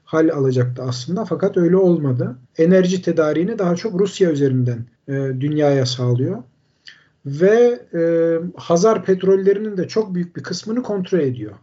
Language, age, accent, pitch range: Turkish, 50-69, native, 140-180 Hz